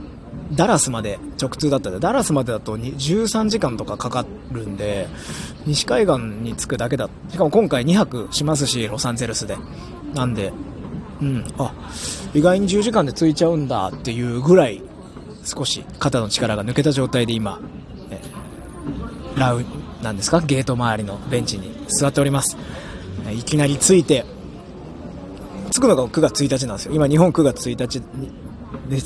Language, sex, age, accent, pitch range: Japanese, male, 20-39, native, 115-150 Hz